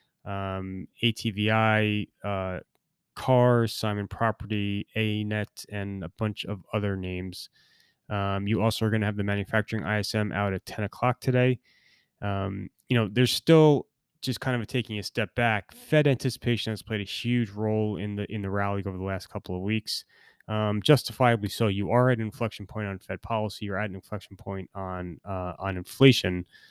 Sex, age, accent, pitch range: male, 20-39, American, 100-115 Hz